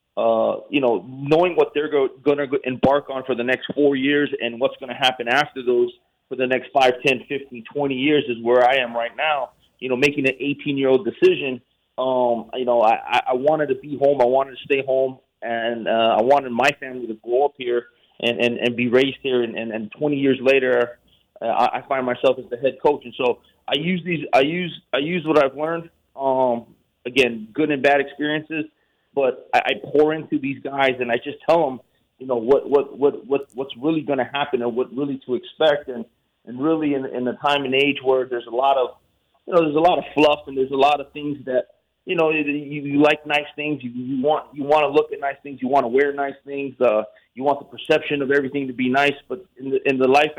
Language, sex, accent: English, male, American